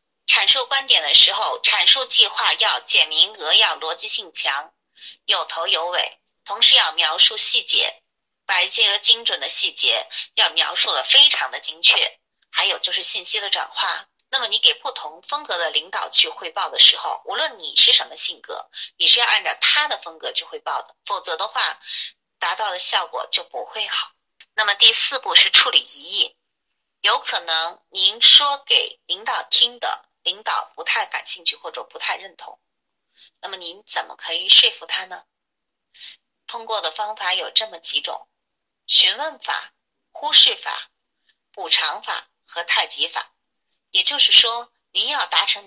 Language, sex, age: Chinese, female, 30-49